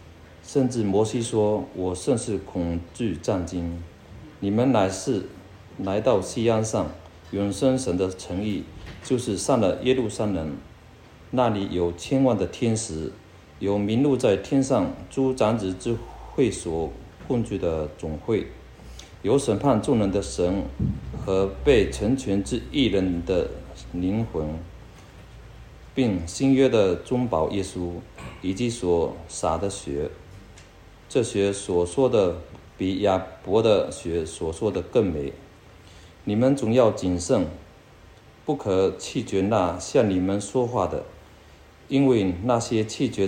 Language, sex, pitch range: Chinese, male, 85-115 Hz